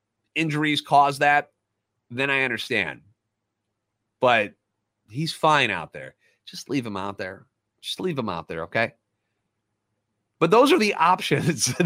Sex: male